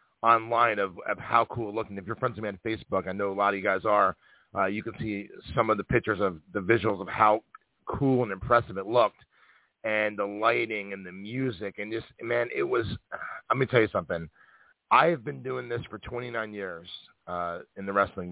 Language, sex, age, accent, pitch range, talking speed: English, male, 40-59, American, 100-115 Hz, 225 wpm